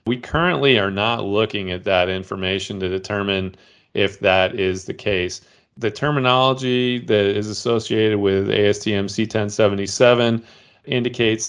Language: English